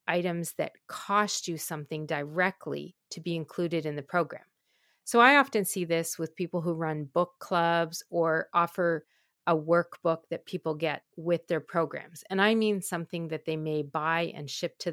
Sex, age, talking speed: female, 40-59, 175 wpm